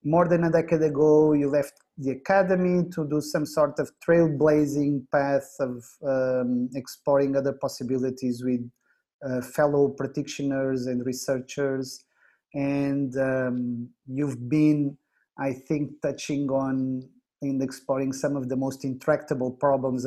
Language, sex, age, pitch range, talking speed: English, male, 30-49, 130-150 Hz, 130 wpm